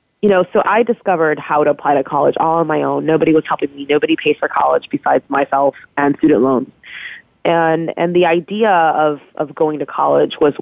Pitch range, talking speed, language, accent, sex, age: 145-180 Hz, 210 wpm, English, American, female, 20-39